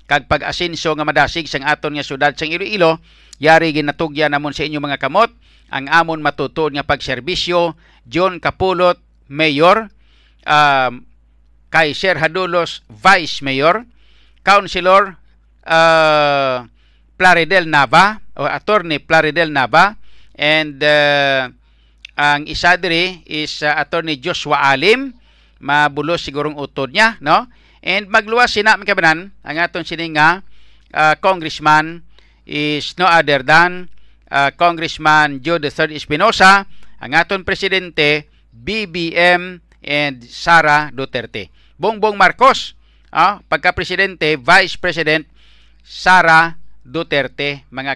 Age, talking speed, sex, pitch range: 50-69, 110 wpm, male, 145-180 Hz